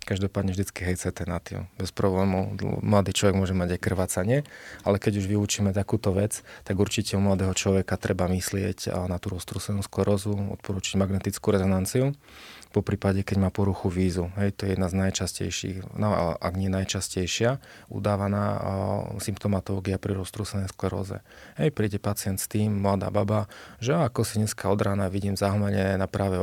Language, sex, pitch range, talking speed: Slovak, male, 95-105 Hz, 160 wpm